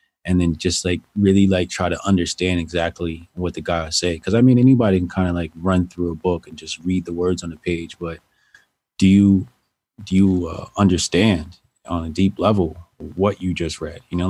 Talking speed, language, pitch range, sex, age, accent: 215 wpm, English, 85-100 Hz, male, 30-49, American